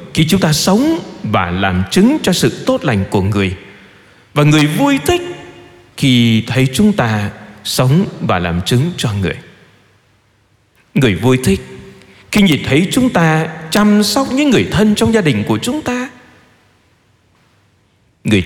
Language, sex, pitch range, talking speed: Vietnamese, male, 100-155 Hz, 155 wpm